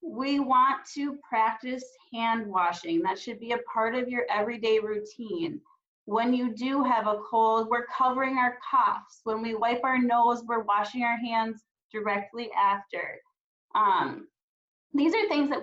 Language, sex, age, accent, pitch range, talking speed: English, female, 20-39, American, 195-245 Hz, 155 wpm